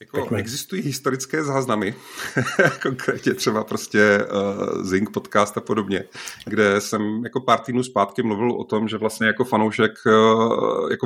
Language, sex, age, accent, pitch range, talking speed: Czech, male, 30-49, native, 100-115 Hz, 135 wpm